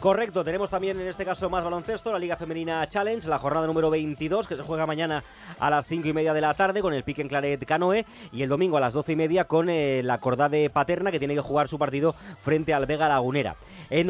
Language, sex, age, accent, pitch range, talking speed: Spanish, male, 30-49, Spanish, 145-180 Hz, 245 wpm